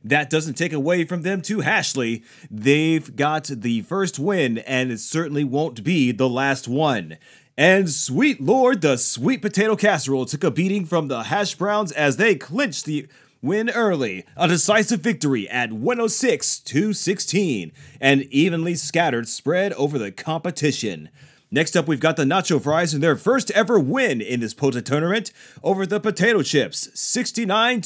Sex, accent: male, American